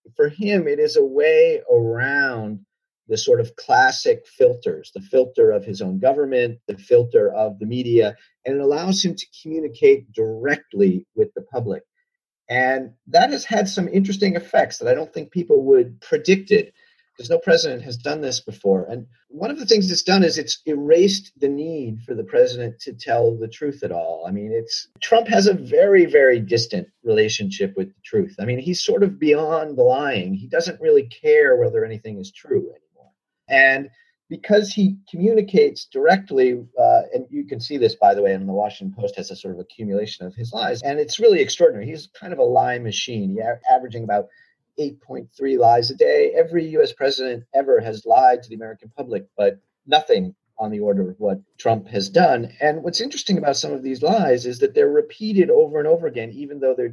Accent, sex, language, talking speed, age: American, male, English, 195 wpm, 40-59